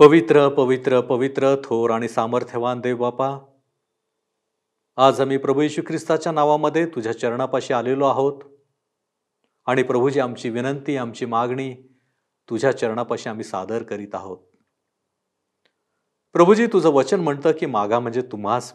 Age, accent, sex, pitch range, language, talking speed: 40-59, native, male, 120-160 Hz, Marathi, 100 wpm